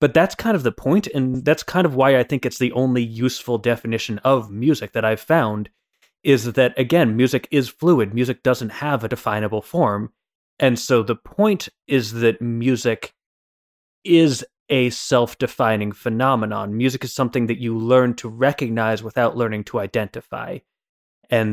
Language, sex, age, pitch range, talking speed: English, male, 30-49, 110-135 Hz, 165 wpm